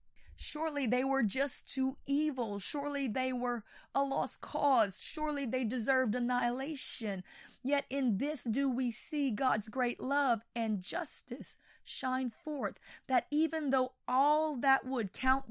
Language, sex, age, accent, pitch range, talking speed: English, female, 20-39, American, 205-260 Hz, 140 wpm